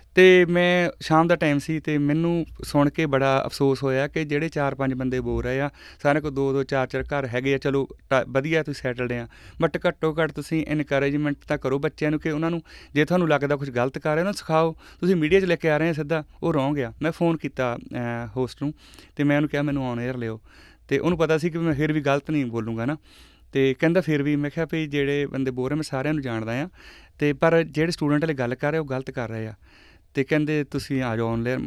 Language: Punjabi